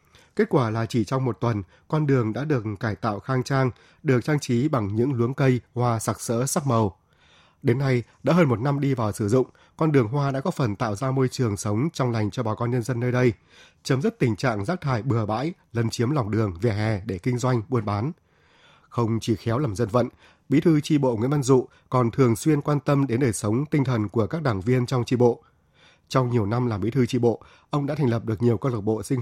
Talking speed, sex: 255 wpm, male